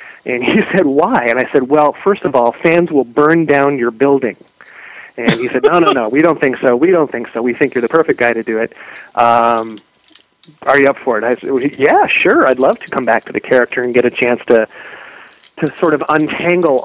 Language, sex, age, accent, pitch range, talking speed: English, male, 30-49, American, 120-150 Hz, 240 wpm